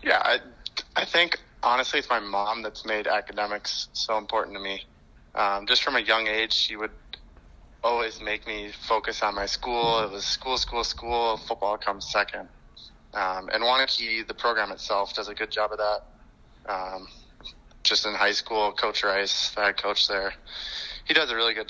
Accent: American